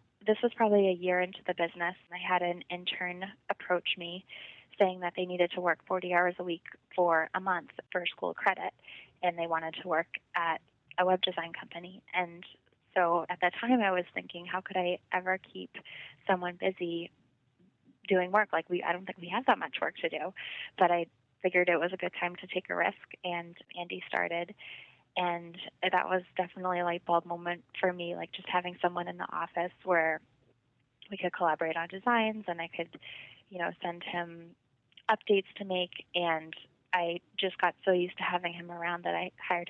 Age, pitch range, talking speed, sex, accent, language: 20-39, 170-185 Hz, 200 wpm, female, American, English